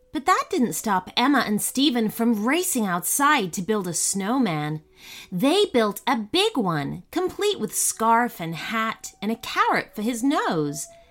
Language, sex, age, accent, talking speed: English, female, 30-49, American, 160 wpm